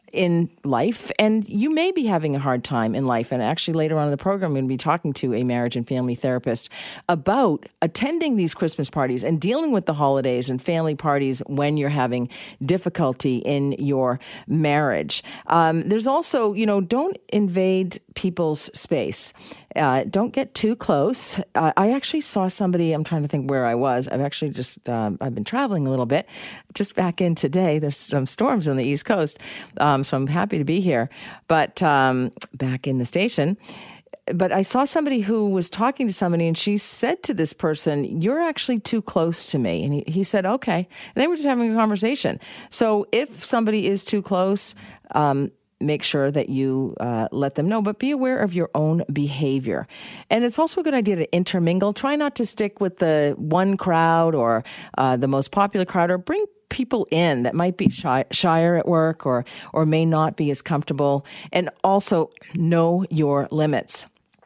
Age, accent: 40-59, American